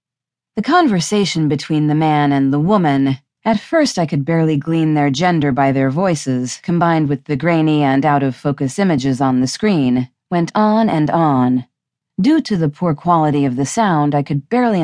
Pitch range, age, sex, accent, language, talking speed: 140-200 Hz, 40-59, female, American, English, 170 wpm